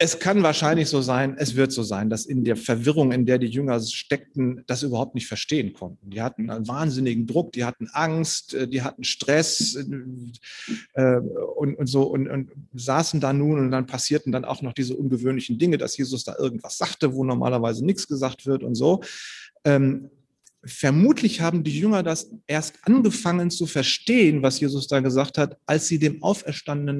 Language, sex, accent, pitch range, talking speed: German, male, German, 135-190 Hz, 175 wpm